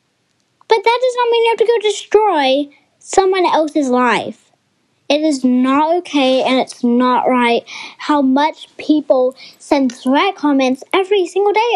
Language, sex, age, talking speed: English, female, 10-29, 135 wpm